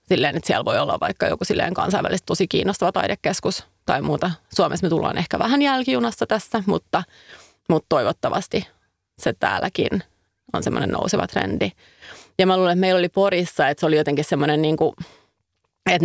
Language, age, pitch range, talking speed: Finnish, 30-49, 160-190 Hz, 160 wpm